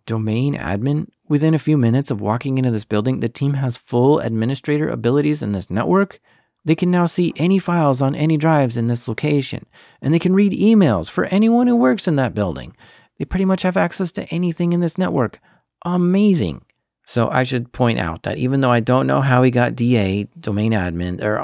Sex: male